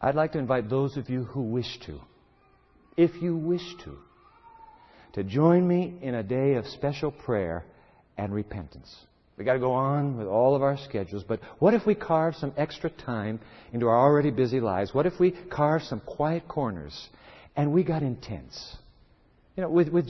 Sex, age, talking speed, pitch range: male, 60-79, 190 wpm, 110-155 Hz